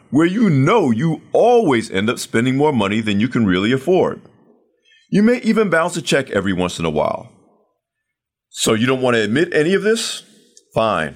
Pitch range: 115-175 Hz